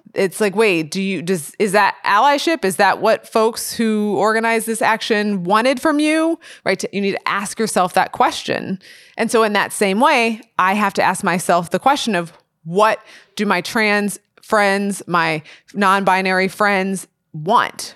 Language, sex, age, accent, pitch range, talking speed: English, female, 20-39, American, 175-215 Hz, 170 wpm